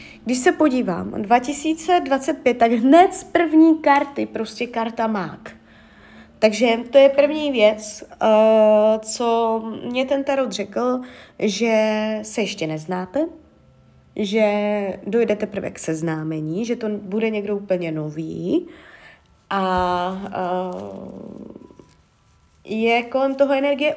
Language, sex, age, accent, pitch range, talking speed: Czech, female, 20-39, native, 205-255 Hz, 105 wpm